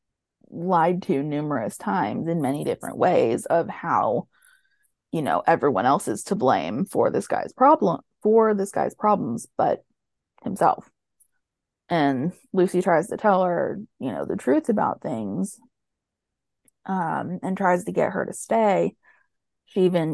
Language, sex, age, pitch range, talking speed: English, female, 20-39, 170-220 Hz, 145 wpm